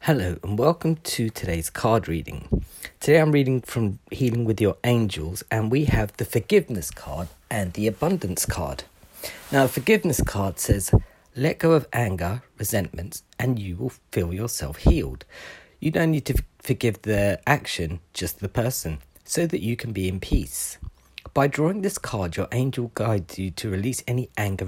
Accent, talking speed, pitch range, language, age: British, 170 wpm, 95-135 Hz, English, 40-59